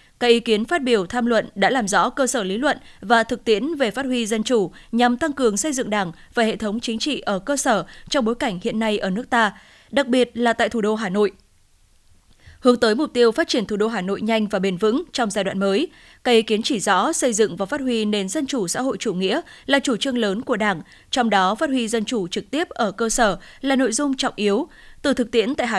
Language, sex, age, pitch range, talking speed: Vietnamese, female, 20-39, 210-260 Hz, 265 wpm